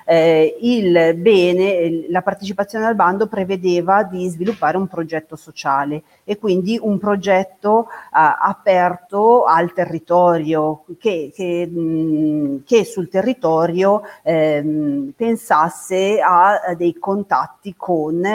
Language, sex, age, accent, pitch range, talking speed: Italian, female, 40-59, native, 160-195 Hz, 110 wpm